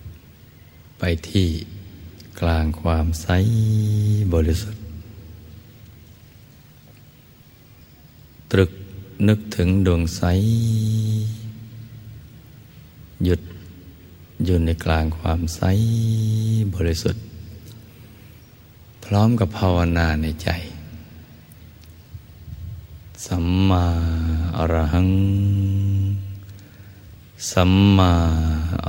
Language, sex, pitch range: Thai, male, 85-100 Hz